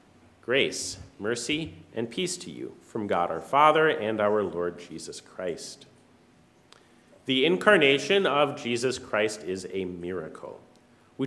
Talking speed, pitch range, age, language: 130 wpm, 120-170 Hz, 40-59, English